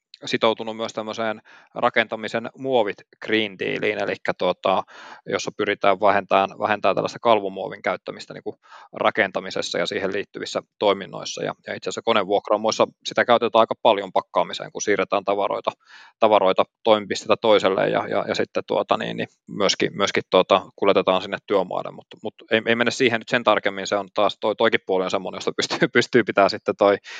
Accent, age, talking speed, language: native, 20-39, 160 wpm, Finnish